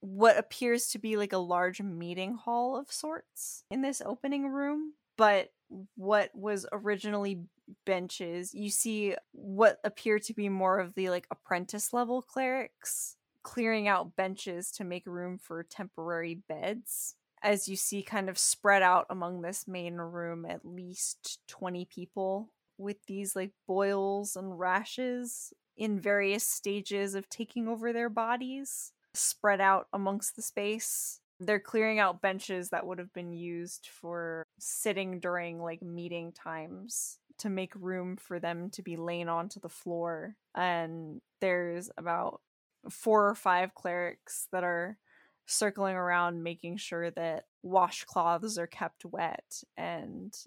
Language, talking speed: English, 145 wpm